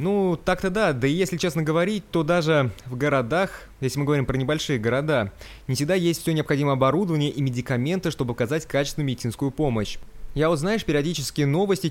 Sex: male